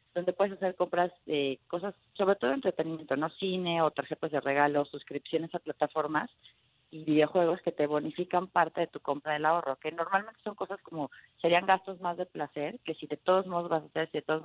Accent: Mexican